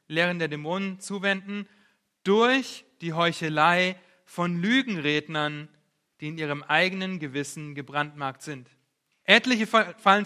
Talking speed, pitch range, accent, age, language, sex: 105 wpm, 150-195 Hz, German, 30-49, German, male